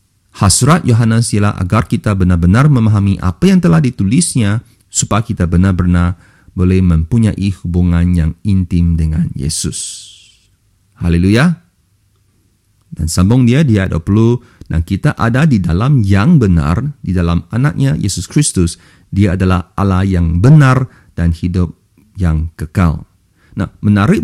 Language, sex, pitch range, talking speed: English, male, 90-115 Hz, 125 wpm